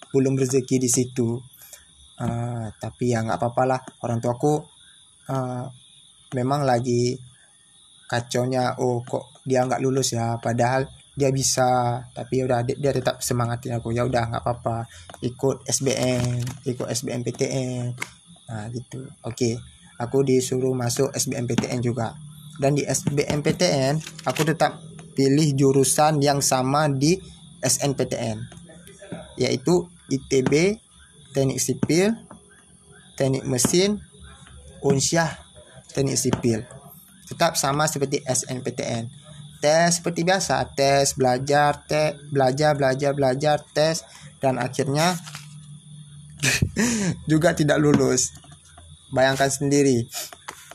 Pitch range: 125-150 Hz